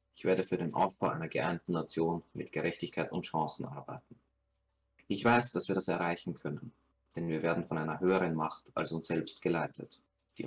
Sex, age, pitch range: male, 30-49, 80-95 Hz